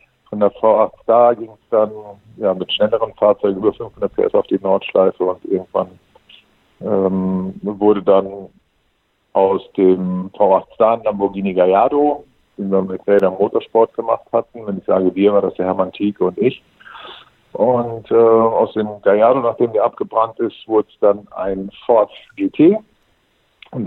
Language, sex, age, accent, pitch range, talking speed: German, male, 50-69, German, 95-115 Hz, 160 wpm